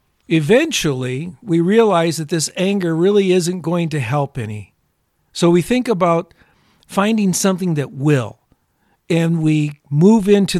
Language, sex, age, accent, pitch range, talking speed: English, male, 50-69, American, 130-185 Hz, 135 wpm